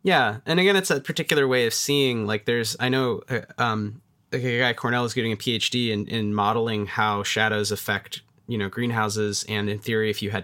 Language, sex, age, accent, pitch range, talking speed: English, male, 30-49, American, 105-125 Hz, 215 wpm